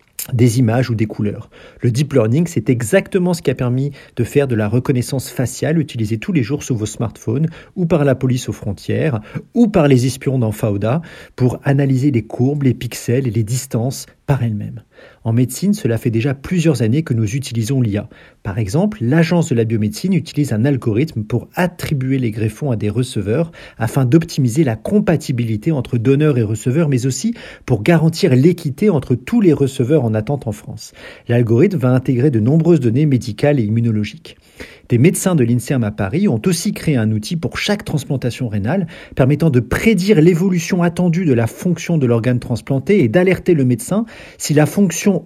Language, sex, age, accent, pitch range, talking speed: French, male, 40-59, French, 115-165 Hz, 185 wpm